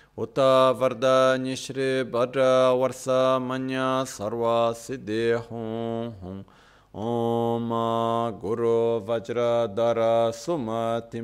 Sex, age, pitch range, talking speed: male, 30-49, 115-130 Hz, 55 wpm